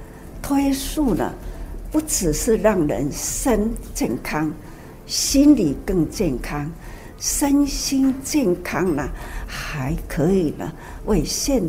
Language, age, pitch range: Chinese, 60-79, 155-235 Hz